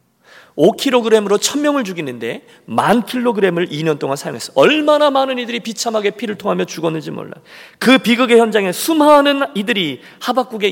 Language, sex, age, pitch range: Korean, male, 40-59, 155-255 Hz